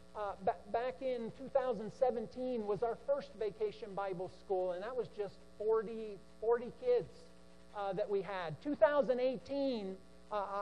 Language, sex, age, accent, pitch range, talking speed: English, male, 50-69, American, 190-270 Hz, 125 wpm